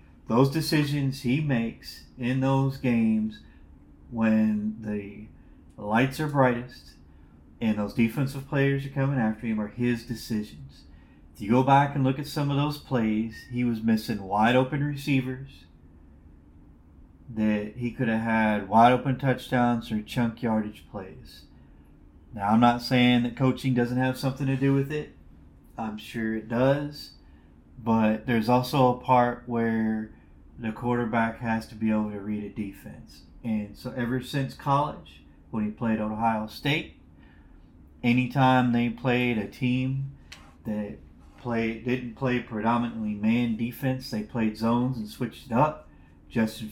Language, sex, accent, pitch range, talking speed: English, male, American, 105-125 Hz, 145 wpm